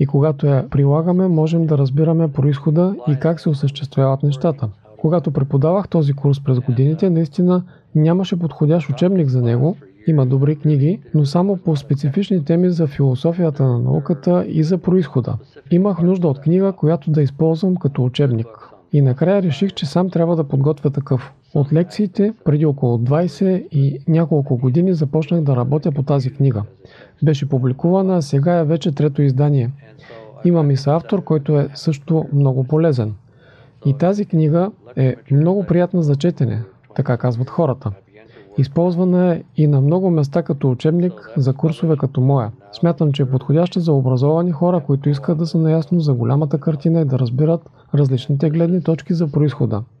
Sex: male